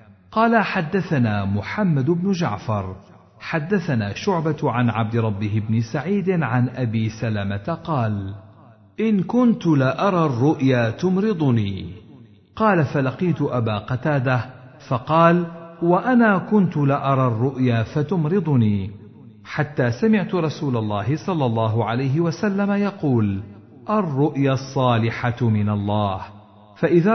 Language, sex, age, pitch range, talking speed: Arabic, male, 50-69, 110-165 Hz, 105 wpm